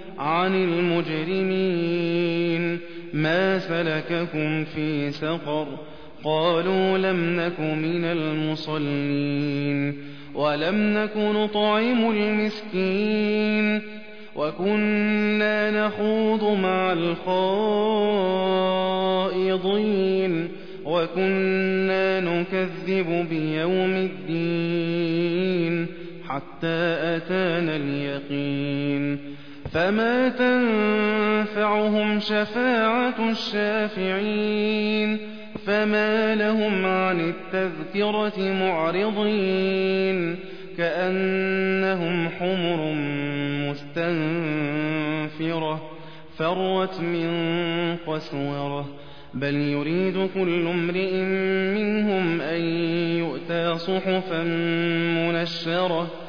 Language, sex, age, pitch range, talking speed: Arabic, male, 30-49, 155-190 Hz, 50 wpm